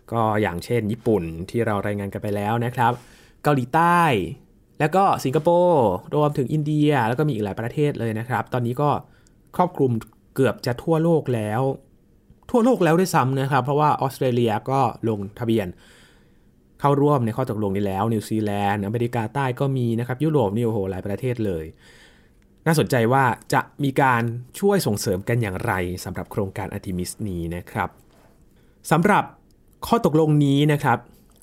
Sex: male